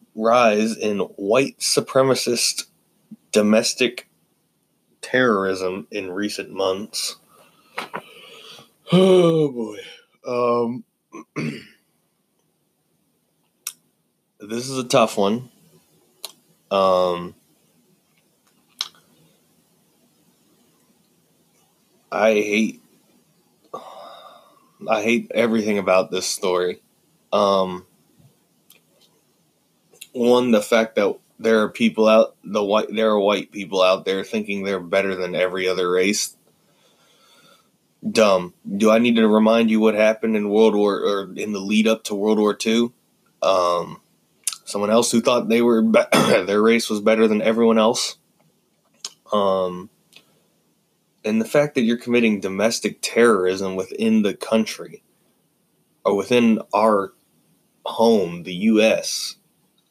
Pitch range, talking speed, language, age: 100-115 Hz, 105 wpm, English, 20-39